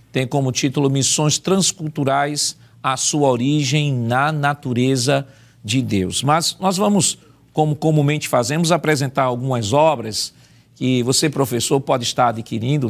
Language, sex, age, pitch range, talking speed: Portuguese, male, 50-69, 120-140 Hz, 125 wpm